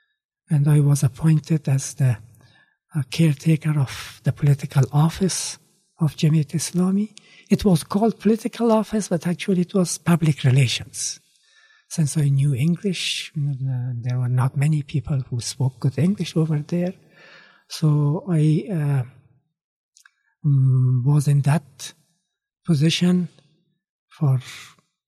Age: 60-79